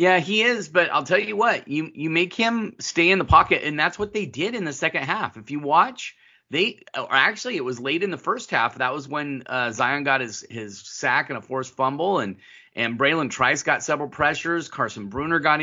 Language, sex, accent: English, male, American